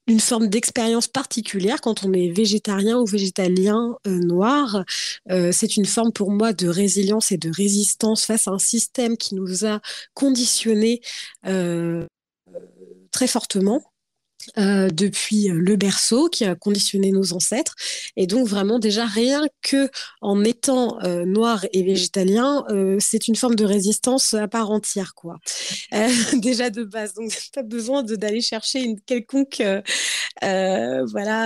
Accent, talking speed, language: French, 155 wpm, French